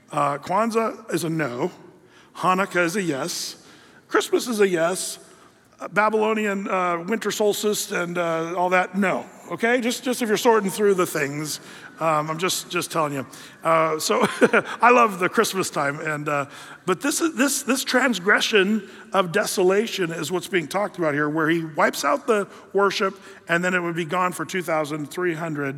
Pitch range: 160-205 Hz